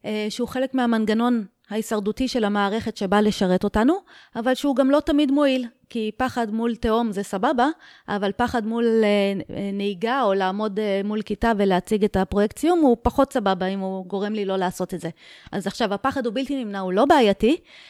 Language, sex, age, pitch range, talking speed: Hebrew, female, 30-49, 215-260 Hz, 175 wpm